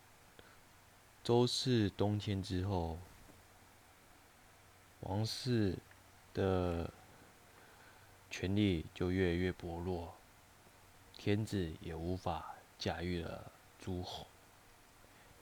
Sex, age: male, 20-39